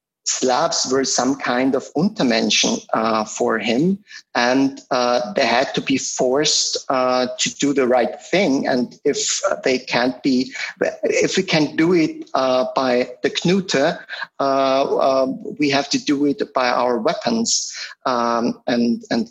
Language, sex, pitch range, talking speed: English, male, 120-195 Hz, 150 wpm